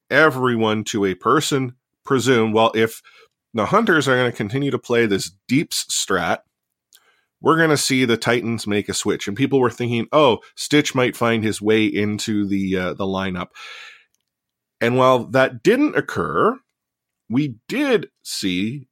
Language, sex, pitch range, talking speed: English, male, 105-130 Hz, 160 wpm